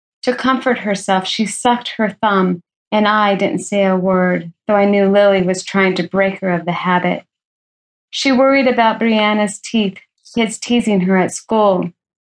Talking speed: 170 wpm